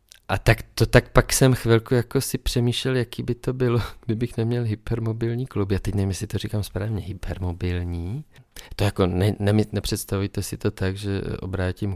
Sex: male